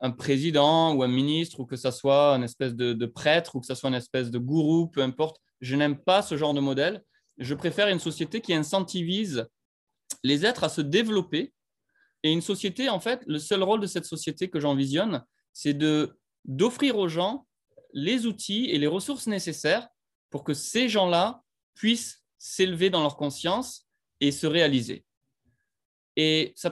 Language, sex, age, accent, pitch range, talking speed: French, male, 20-39, French, 140-200 Hz, 180 wpm